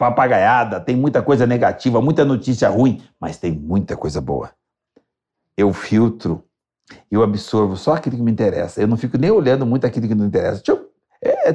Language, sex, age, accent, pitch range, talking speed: Portuguese, male, 60-79, Brazilian, 120-165 Hz, 175 wpm